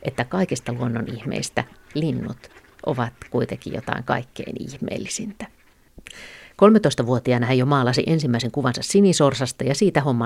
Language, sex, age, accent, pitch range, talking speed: Finnish, female, 50-69, native, 125-155 Hz, 115 wpm